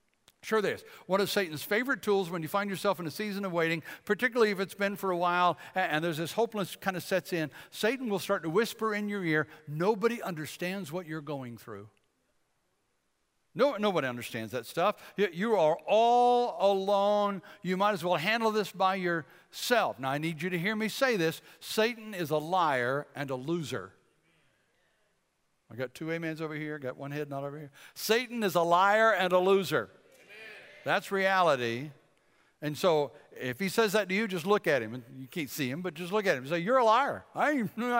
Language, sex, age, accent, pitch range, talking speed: English, male, 60-79, American, 150-205 Hz, 200 wpm